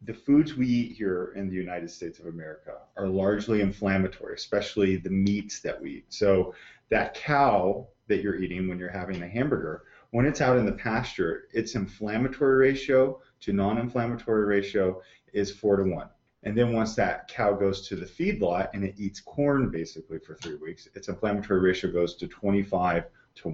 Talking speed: 180 wpm